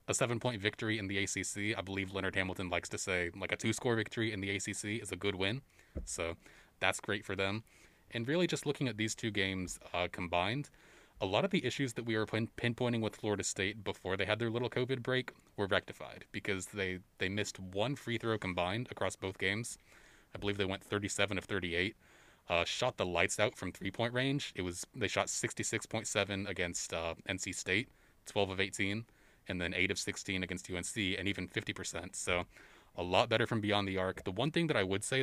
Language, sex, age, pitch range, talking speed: English, male, 20-39, 95-115 Hz, 210 wpm